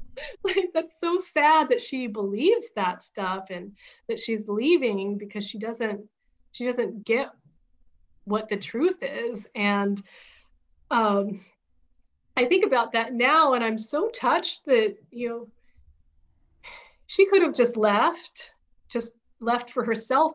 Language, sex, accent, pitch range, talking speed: English, female, American, 215-285 Hz, 135 wpm